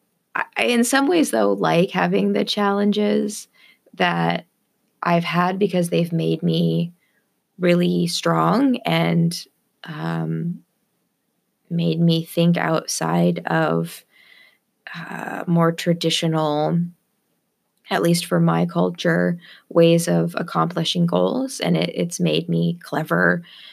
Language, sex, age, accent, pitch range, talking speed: English, female, 20-39, American, 155-185 Hz, 110 wpm